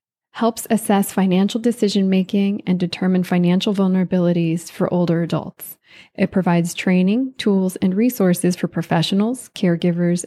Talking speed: 115 wpm